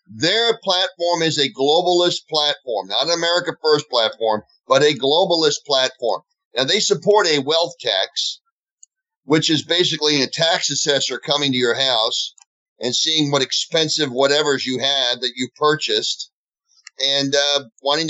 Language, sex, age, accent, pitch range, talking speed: English, male, 40-59, American, 140-170 Hz, 145 wpm